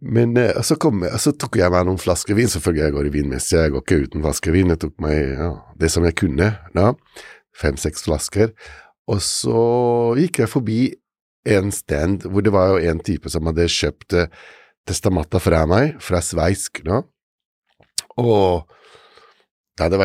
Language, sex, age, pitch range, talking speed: English, male, 60-79, 80-105 Hz, 160 wpm